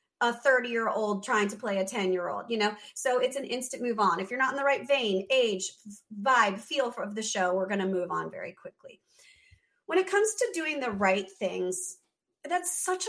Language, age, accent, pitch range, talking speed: English, 30-49, American, 205-295 Hz, 205 wpm